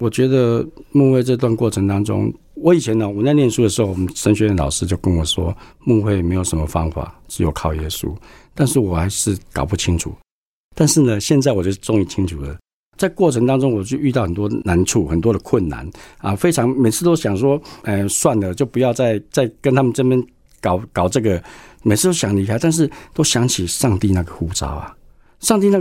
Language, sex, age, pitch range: Chinese, male, 50-69, 95-130 Hz